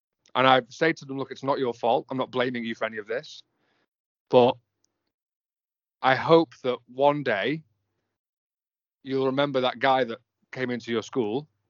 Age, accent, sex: 30-49, British, male